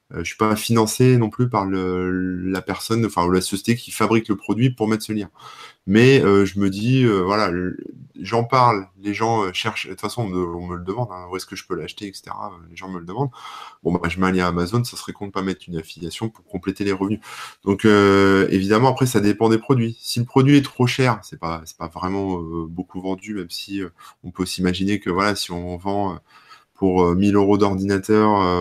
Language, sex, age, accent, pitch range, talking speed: French, male, 20-39, French, 90-110 Hz, 250 wpm